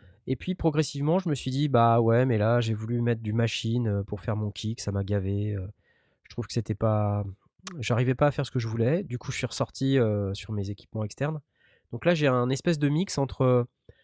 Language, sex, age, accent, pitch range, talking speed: French, male, 20-39, French, 105-145 Hz, 230 wpm